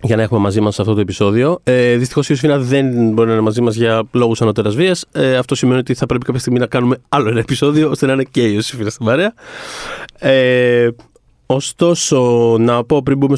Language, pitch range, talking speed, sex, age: Greek, 115-140 Hz, 220 wpm, male, 30-49